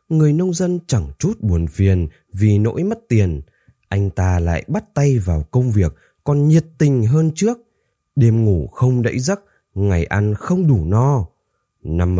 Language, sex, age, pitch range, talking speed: Vietnamese, male, 20-39, 95-140 Hz, 170 wpm